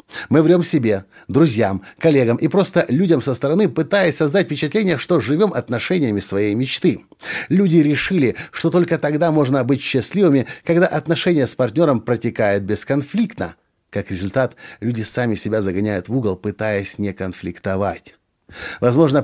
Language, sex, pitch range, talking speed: Russian, male, 115-160 Hz, 135 wpm